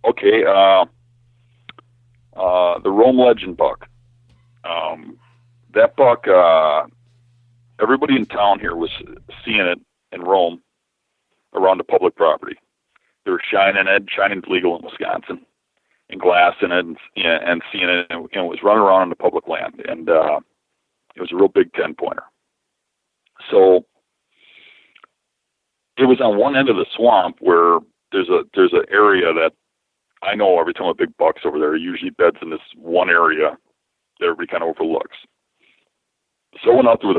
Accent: American